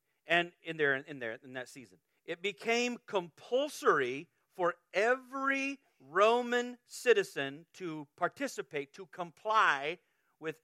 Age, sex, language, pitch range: 40-59, male, English, 140-180 Hz